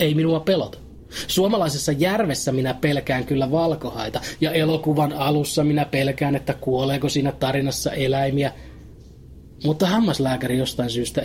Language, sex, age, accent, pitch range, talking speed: Finnish, male, 30-49, native, 125-160 Hz, 125 wpm